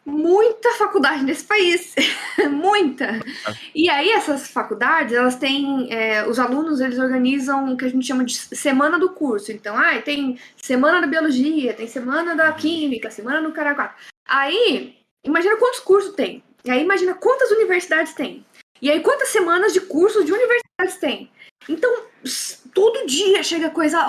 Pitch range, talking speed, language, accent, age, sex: 260-335 Hz, 155 wpm, Portuguese, Brazilian, 20-39, female